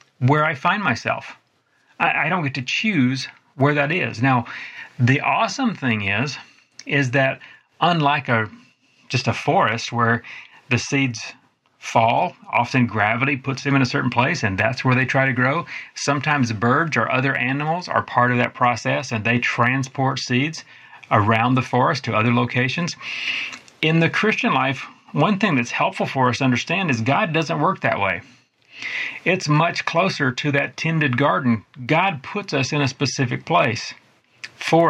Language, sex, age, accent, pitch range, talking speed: English, male, 30-49, American, 120-150 Hz, 165 wpm